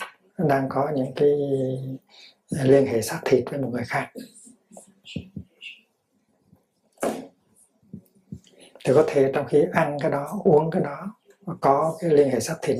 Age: 60-79